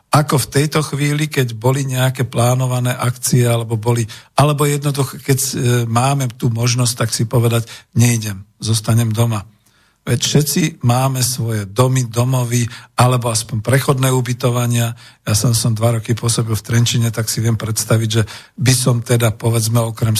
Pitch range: 110-125 Hz